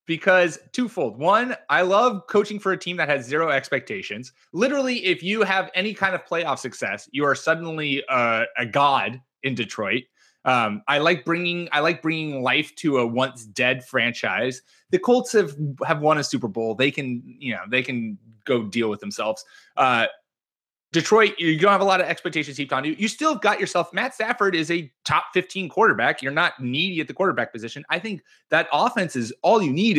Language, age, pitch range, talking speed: English, 20-39, 130-195 Hz, 200 wpm